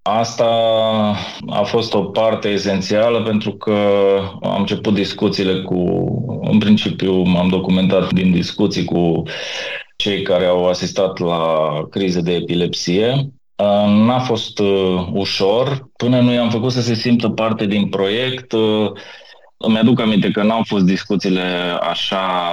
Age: 20-39